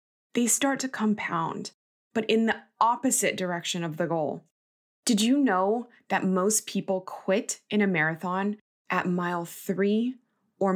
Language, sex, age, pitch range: English, female, 20-39, 175-215 Hz